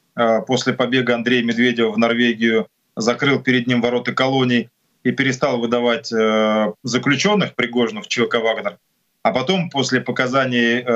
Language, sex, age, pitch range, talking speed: Ukrainian, male, 20-39, 115-135 Hz, 120 wpm